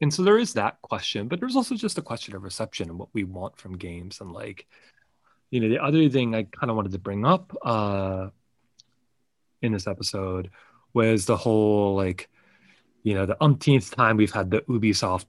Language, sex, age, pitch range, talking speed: English, male, 30-49, 95-125 Hz, 200 wpm